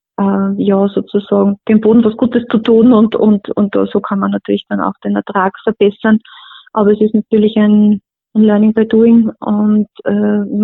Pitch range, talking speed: 200-215 Hz, 180 wpm